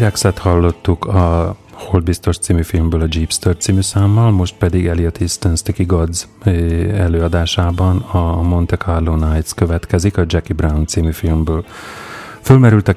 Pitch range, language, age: 80-95 Hz, Hungarian, 30-49